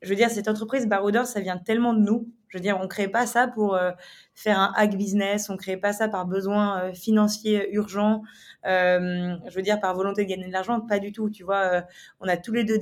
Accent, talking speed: French, 255 wpm